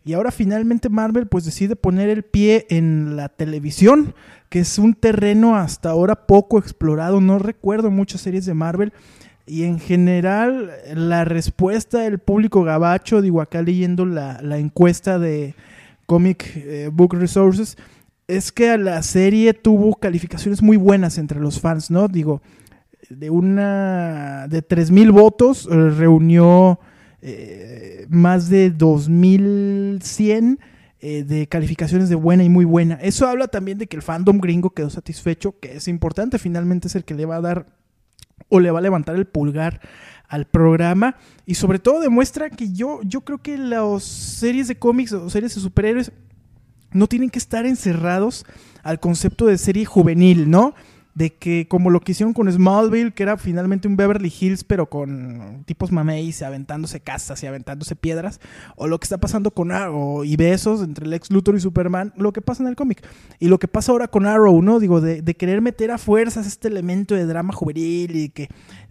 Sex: male